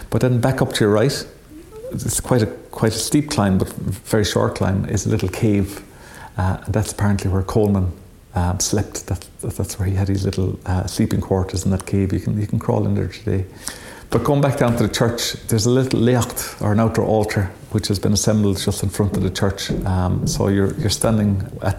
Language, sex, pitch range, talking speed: English, male, 100-115 Hz, 230 wpm